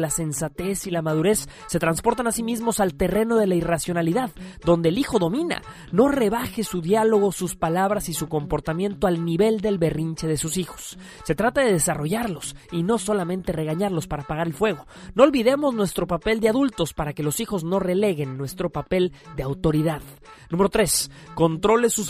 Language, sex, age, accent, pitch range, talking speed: Spanish, male, 30-49, Mexican, 165-220 Hz, 180 wpm